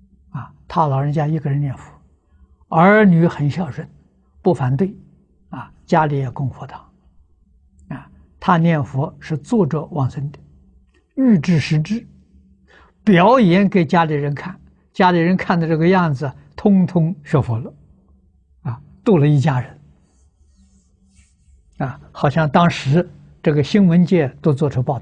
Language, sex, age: Chinese, male, 60-79